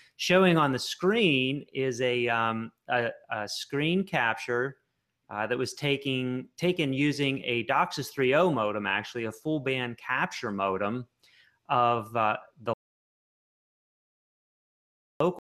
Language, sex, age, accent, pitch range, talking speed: English, male, 30-49, American, 115-135 Hz, 115 wpm